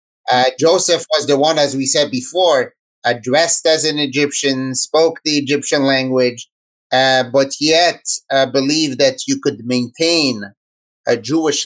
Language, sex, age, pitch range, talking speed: English, male, 30-49, 135-165 Hz, 150 wpm